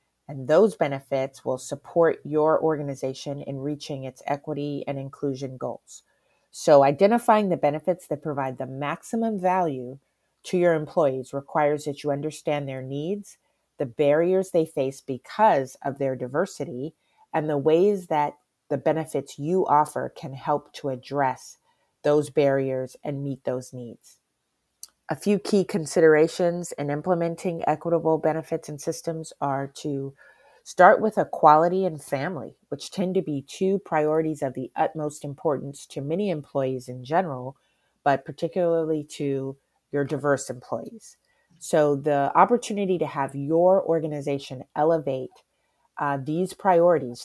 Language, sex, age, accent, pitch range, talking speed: English, female, 30-49, American, 140-165 Hz, 135 wpm